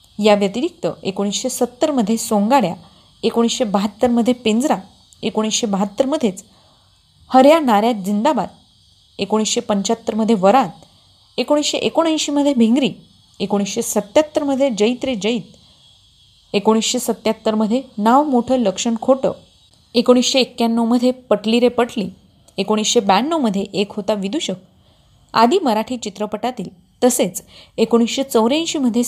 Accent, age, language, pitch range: native, 30-49, Marathi, 205-255 Hz